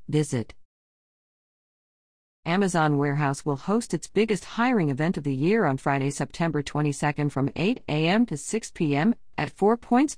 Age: 50-69